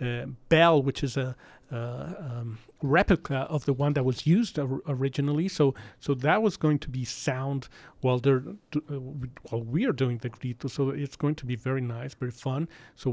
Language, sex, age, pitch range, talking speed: English, male, 40-59, 130-155 Hz, 205 wpm